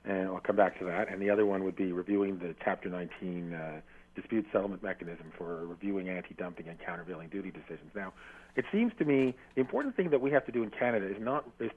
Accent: American